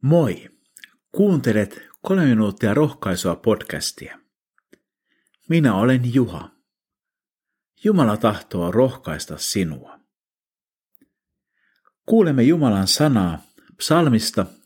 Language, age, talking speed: Finnish, 50-69, 70 wpm